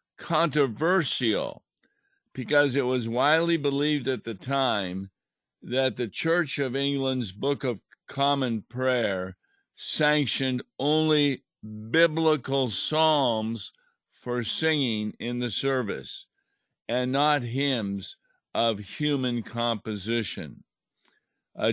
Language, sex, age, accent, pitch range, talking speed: English, male, 50-69, American, 110-135 Hz, 95 wpm